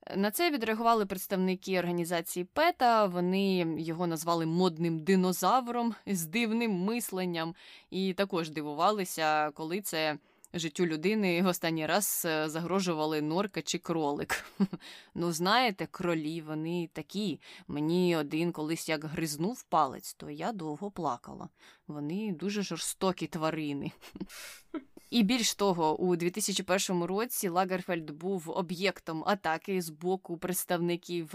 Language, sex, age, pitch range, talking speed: Ukrainian, female, 20-39, 165-205 Hz, 115 wpm